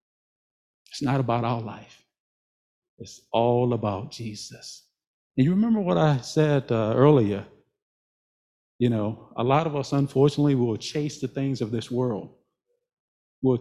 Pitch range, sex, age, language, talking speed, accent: 105-135 Hz, male, 50-69, English, 140 wpm, American